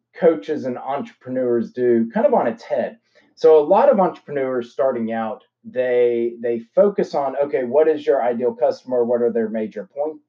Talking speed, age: 180 wpm, 30-49